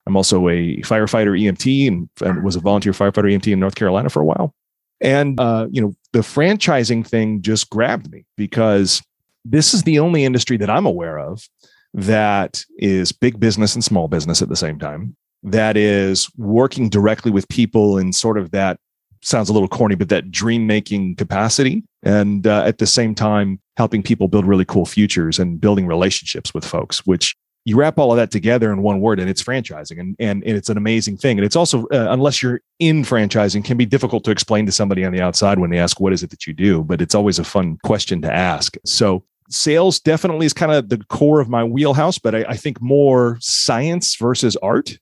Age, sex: 30-49, male